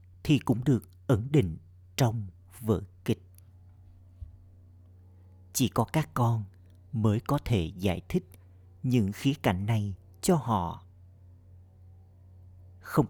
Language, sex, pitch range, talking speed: Vietnamese, male, 90-115 Hz, 110 wpm